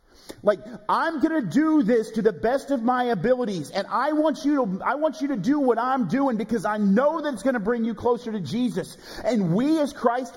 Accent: American